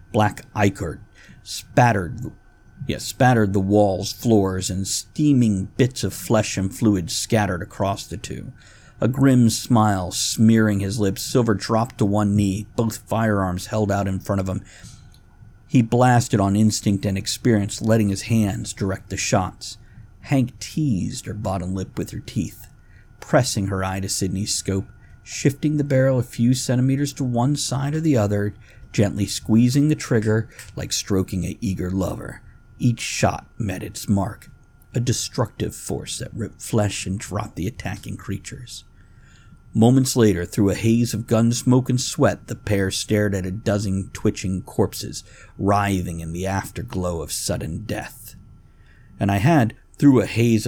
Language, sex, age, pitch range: English, male, 50-69, 95-115 Hz